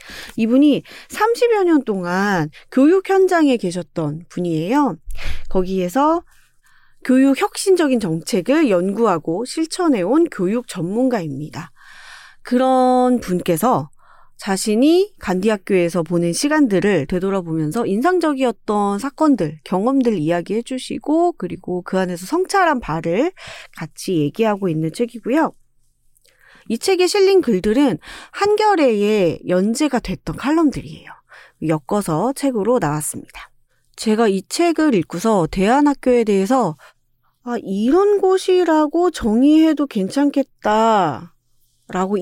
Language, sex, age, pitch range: Korean, female, 30-49, 175-290 Hz